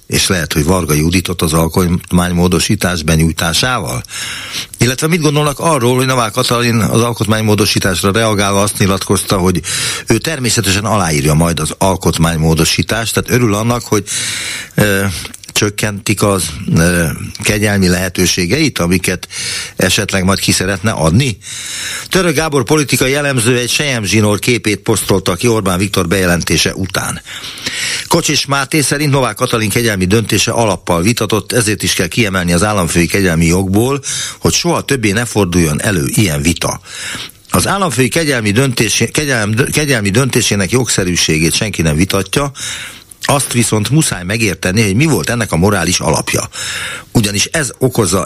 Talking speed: 130 wpm